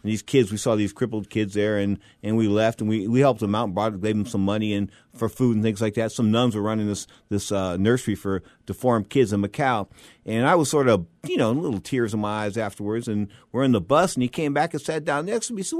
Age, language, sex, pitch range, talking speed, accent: 50-69, English, male, 105-160 Hz, 295 wpm, American